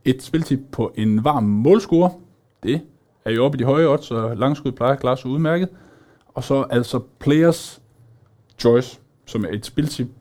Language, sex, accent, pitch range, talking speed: Danish, male, native, 105-145 Hz, 170 wpm